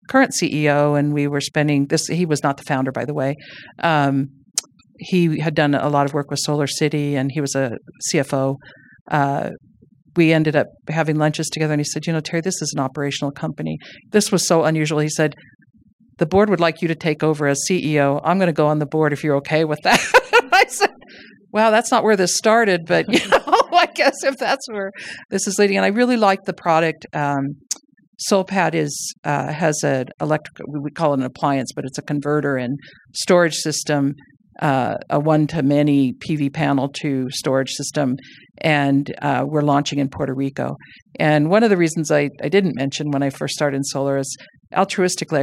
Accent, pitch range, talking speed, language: American, 140-165 Hz, 205 wpm, English